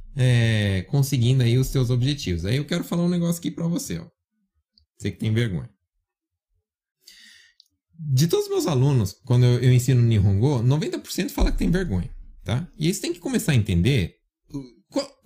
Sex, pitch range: male, 95-150 Hz